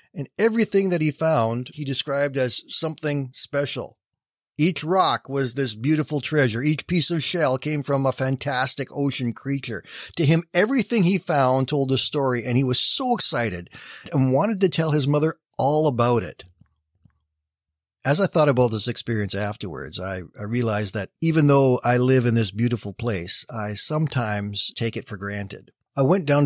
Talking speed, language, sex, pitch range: 170 wpm, English, male, 110-145 Hz